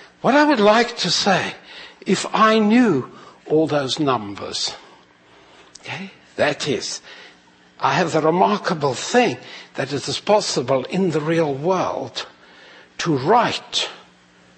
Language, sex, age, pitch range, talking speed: English, male, 60-79, 135-200 Hz, 125 wpm